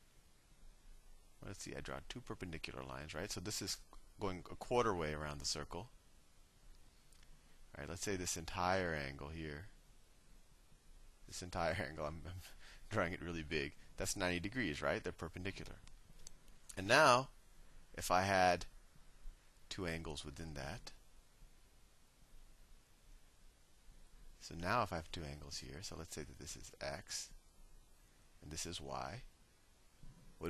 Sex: male